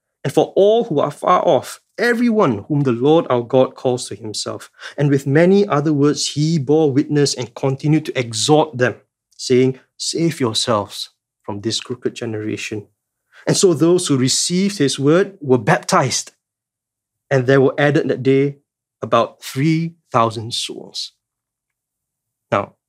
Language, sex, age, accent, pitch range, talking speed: English, male, 20-39, Malaysian, 120-155 Hz, 145 wpm